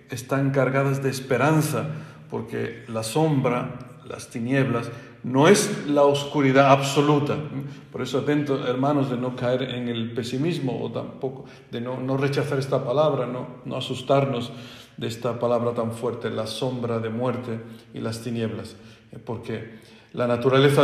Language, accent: Spanish, Mexican